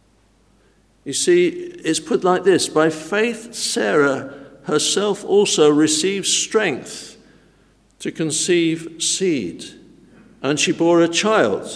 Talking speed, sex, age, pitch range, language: 105 wpm, male, 60-79, 150-205 Hz, English